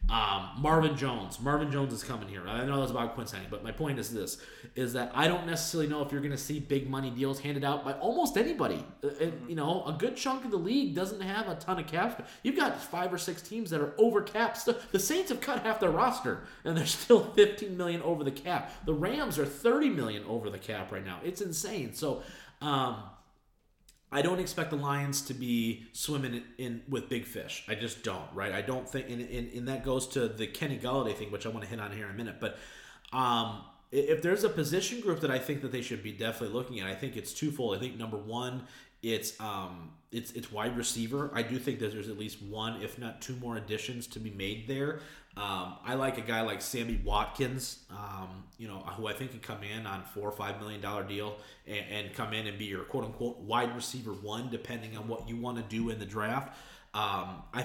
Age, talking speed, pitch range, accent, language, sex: 30-49, 235 wpm, 110-145 Hz, American, English, male